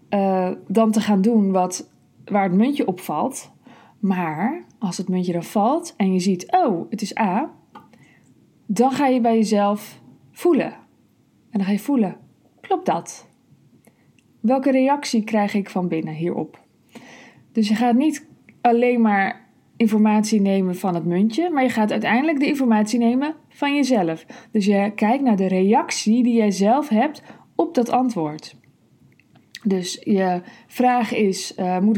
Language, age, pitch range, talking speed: Dutch, 20-39, 195-255 Hz, 150 wpm